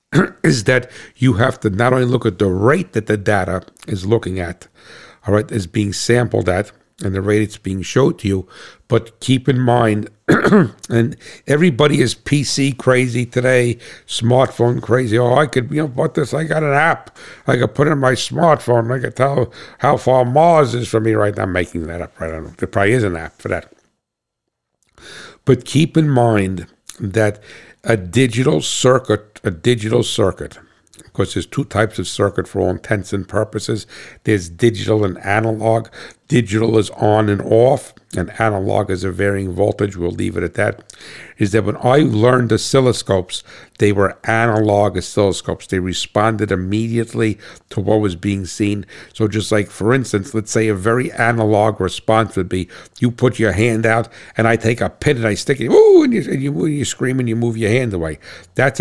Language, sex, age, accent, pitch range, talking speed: English, male, 60-79, American, 100-125 Hz, 195 wpm